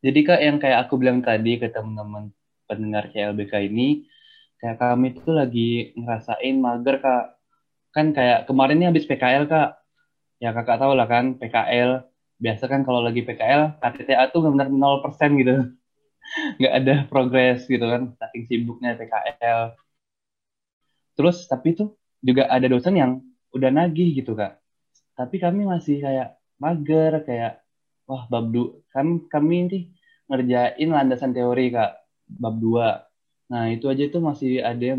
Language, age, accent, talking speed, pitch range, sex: Indonesian, 10-29, native, 145 wpm, 120-150 Hz, male